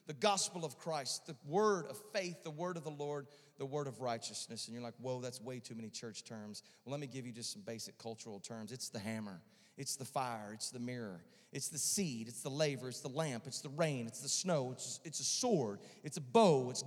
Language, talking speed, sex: English, 240 wpm, male